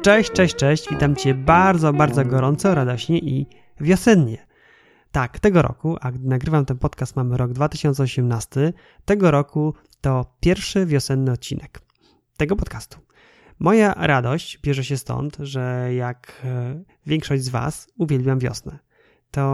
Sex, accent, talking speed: male, native, 130 wpm